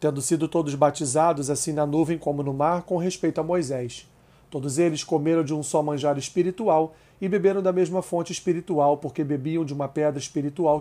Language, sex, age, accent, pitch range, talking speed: Portuguese, male, 40-59, Brazilian, 150-180 Hz, 190 wpm